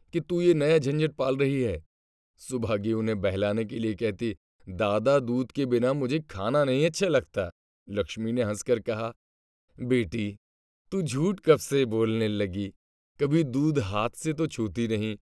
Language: Hindi